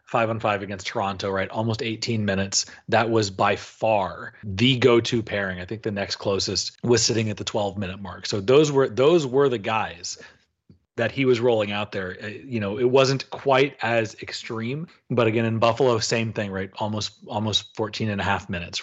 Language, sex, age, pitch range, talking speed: English, male, 30-49, 105-120 Hz, 200 wpm